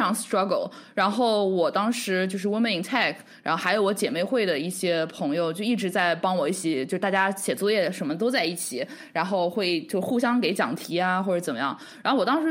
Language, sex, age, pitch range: Chinese, female, 20-39, 180-255 Hz